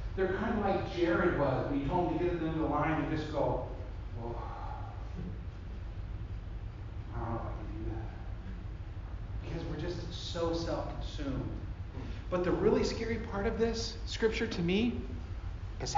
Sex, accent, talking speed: male, American, 160 wpm